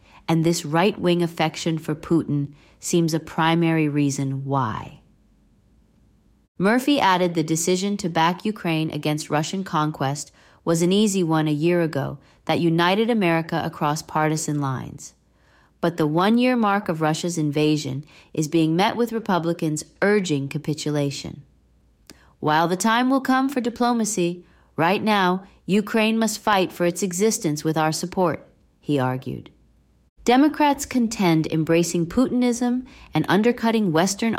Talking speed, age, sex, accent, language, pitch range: 130 wpm, 40-59, female, American, English, 150-190 Hz